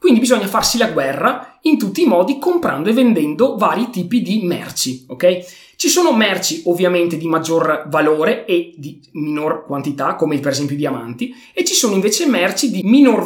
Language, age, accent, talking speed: Italian, 20-39, native, 180 wpm